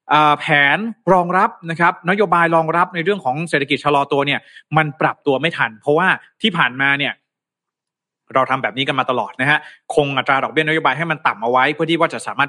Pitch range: 140-180 Hz